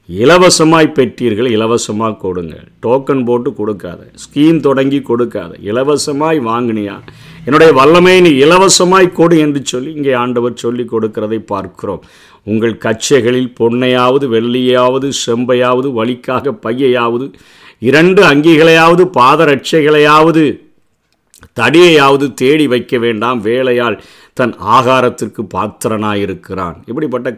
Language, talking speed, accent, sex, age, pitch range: Tamil, 90 wpm, native, male, 50-69, 115-140 Hz